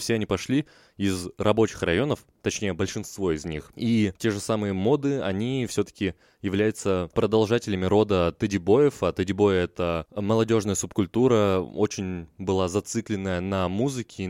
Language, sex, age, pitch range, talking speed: Russian, male, 20-39, 95-110 Hz, 135 wpm